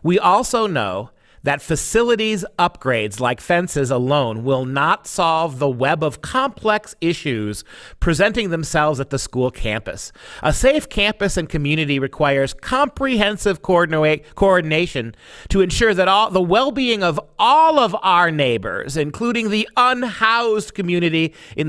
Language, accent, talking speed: English, American, 130 wpm